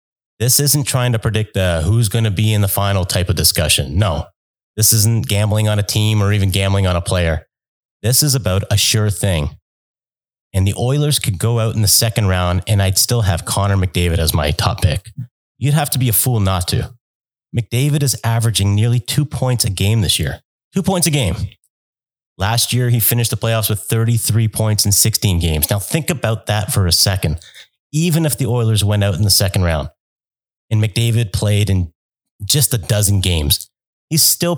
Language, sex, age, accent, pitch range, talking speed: English, male, 30-49, American, 95-120 Hz, 200 wpm